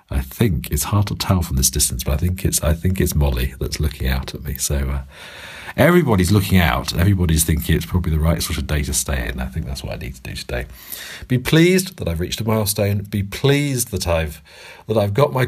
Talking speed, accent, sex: 245 wpm, British, male